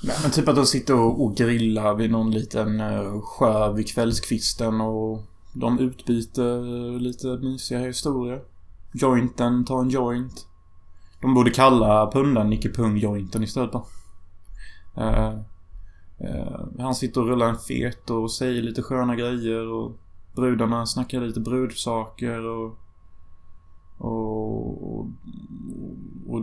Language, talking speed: Swedish, 125 wpm